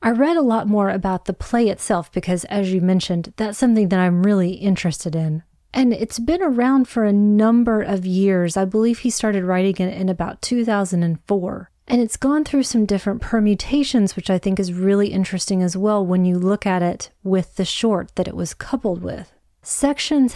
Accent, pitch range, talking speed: American, 185-230 Hz, 200 wpm